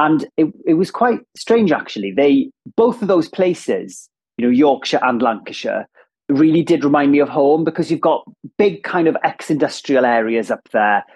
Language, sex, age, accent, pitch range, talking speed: English, male, 30-49, British, 125-170 Hz, 175 wpm